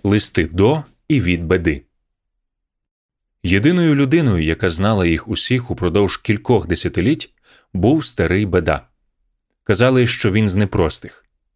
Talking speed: 115 wpm